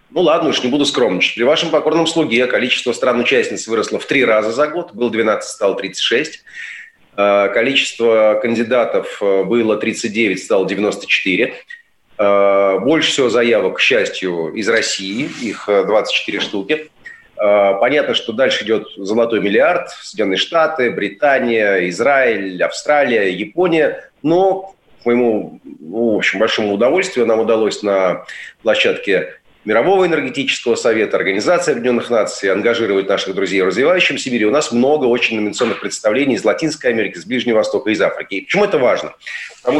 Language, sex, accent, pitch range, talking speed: Russian, male, native, 115-180 Hz, 135 wpm